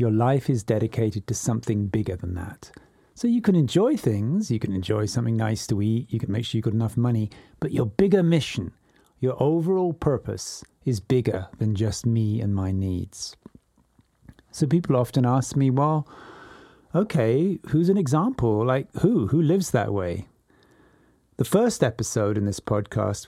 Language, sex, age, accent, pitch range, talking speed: English, male, 40-59, British, 105-145 Hz, 170 wpm